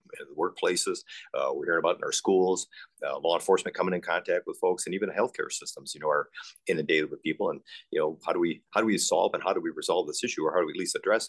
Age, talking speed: 40-59, 265 wpm